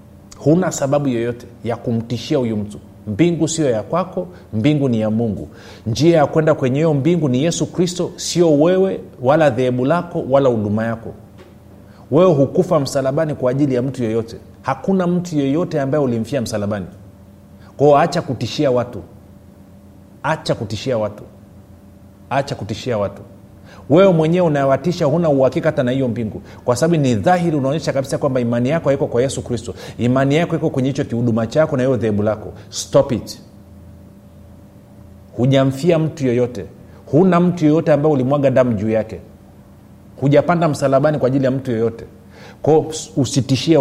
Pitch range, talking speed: 100-145 Hz, 150 wpm